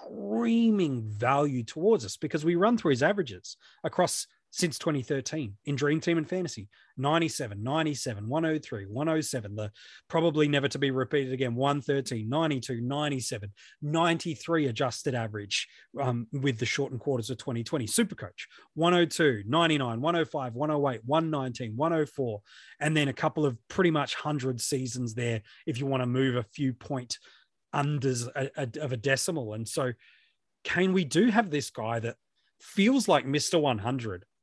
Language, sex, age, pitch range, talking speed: English, male, 30-49, 120-160 Hz, 150 wpm